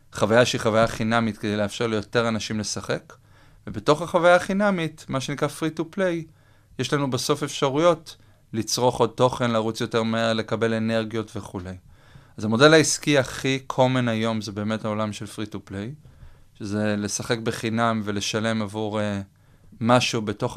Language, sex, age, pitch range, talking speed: Hebrew, male, 30-49, 105-120 Hz, 150 wpm